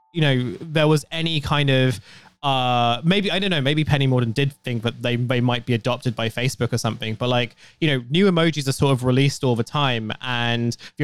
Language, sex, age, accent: English, male, 20-39, British